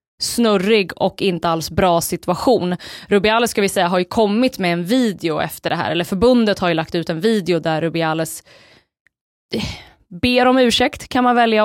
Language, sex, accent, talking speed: Swedish, female, native, 180 wpm